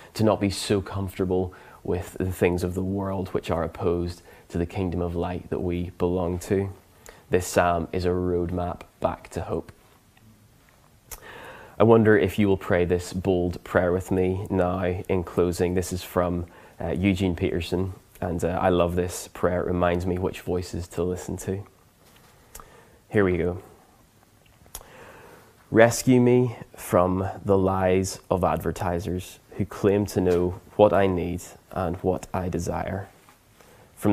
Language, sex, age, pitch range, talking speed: English, male, 20-39, 90-95 Hz, 155 wpm